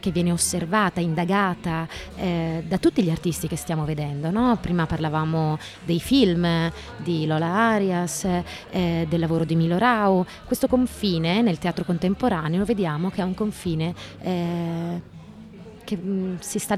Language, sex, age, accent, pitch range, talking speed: Italian, female, 30-49, native, 170-210 Hz, 140 wpm